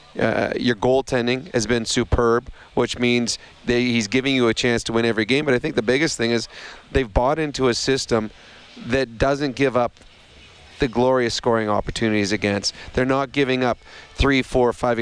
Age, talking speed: 30-49, 185 wpm